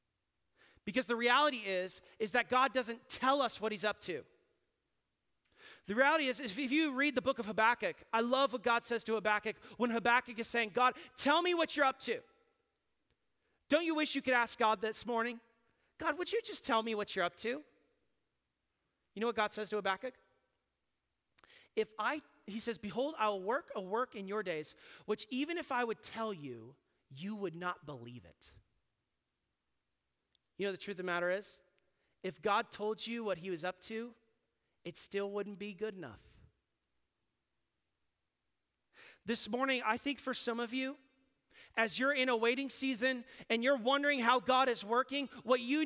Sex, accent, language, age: male, American, English, 30-49